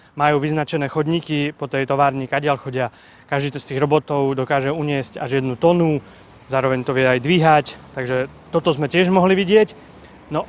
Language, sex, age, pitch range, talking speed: Slovak, male, 30-49, 135-165 Hz, 165 wpm